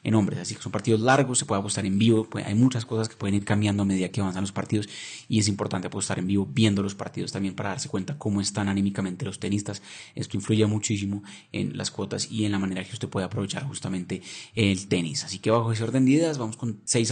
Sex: male